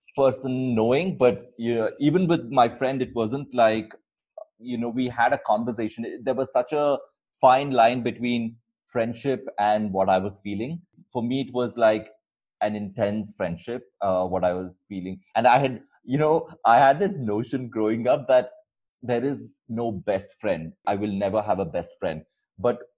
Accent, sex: Indian, male